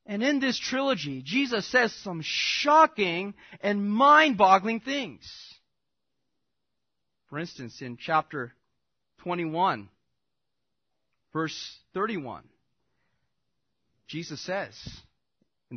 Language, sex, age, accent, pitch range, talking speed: English, male, 30-49, American, 145-205 Hz, 80 wpm